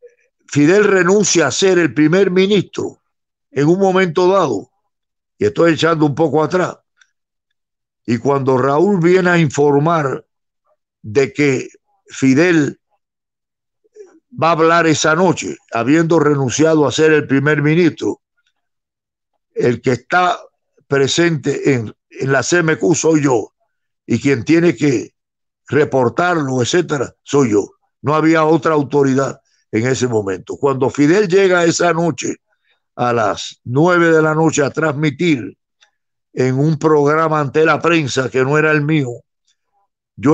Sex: male